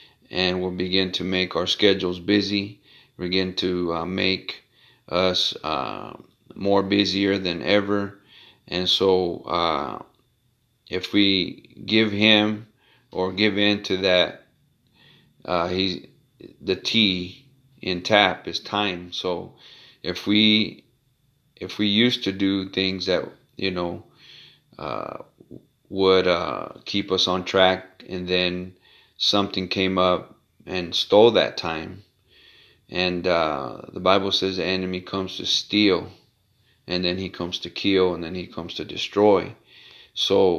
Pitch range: 90-100 Hz